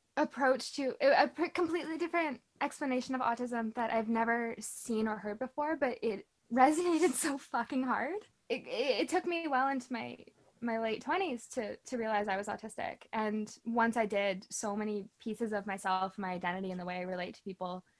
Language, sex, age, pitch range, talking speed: English, female, 10-29, 200-260 Hz, 185 wpm